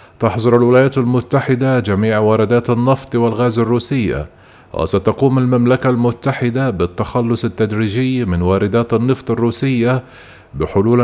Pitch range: 110-130 Hz